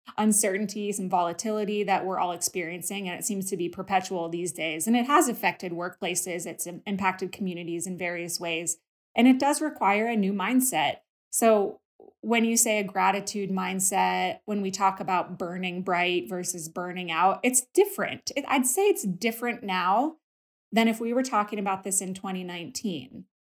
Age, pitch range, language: 20-39, 180-220 Hz, English